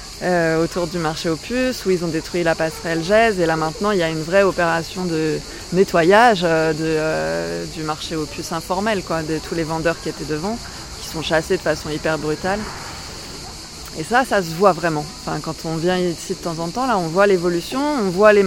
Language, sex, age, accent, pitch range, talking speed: French, female, 20-39, French, 155-185 Hz, 220 wpm